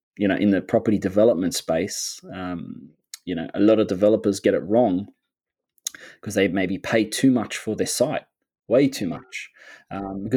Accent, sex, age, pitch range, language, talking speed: Australian, male, 20-39, 95-115 Hz, English, 175 wpm